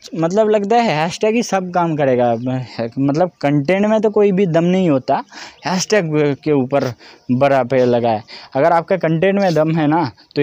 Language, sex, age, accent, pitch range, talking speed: Hindi, male, 20-39, native, 140-185 Hz, 185 wpm